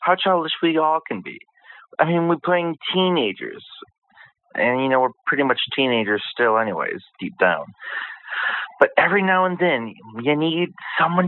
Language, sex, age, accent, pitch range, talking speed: English, male, 40-59, American, 140-185 Hz, 160 wpm